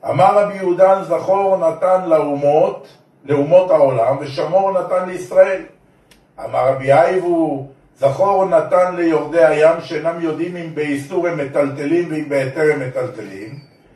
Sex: male